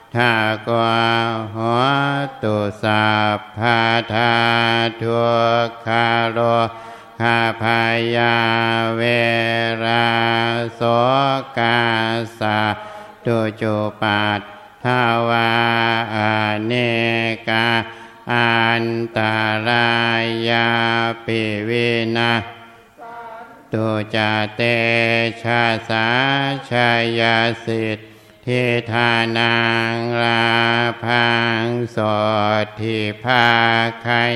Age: 60-79